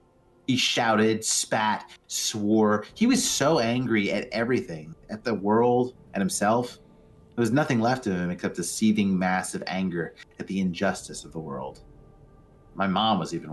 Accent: American